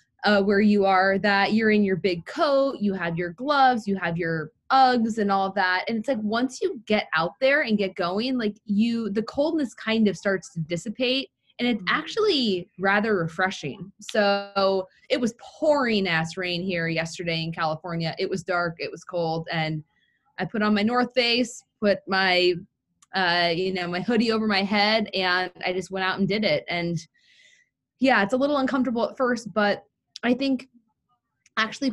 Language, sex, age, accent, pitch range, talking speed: English, female, 20-39, American, 175-225 Hz, 185 wpm